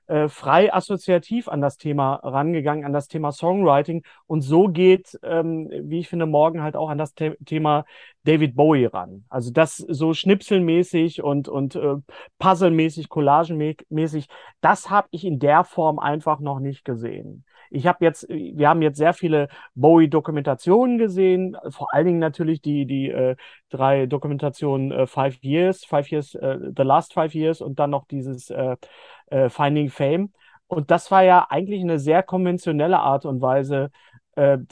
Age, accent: 30-49, German